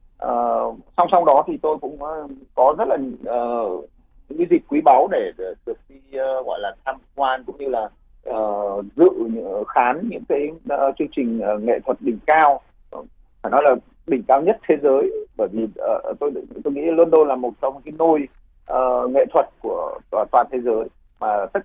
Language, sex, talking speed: Vietnamese, male, 195 wpm